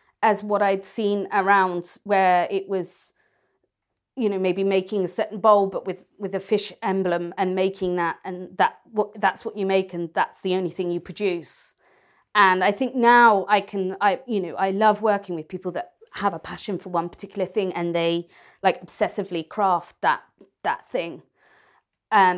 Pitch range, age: 180-210 Hz, 30-49